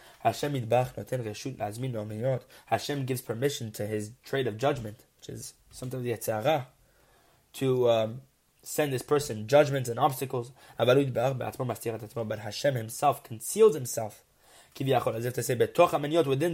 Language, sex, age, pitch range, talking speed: English, male, 20-39, 130-165 Hz, 95 wpm